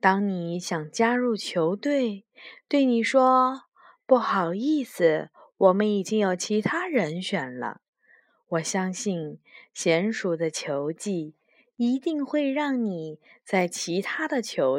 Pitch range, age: 190-275 Hz, 20-39